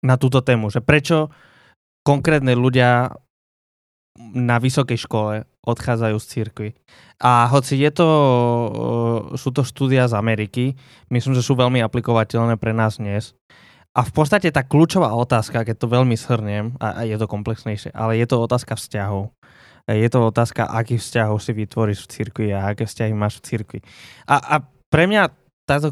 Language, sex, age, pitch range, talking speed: Slovak, male, 20-39, 115-135 Hz, 160 wpm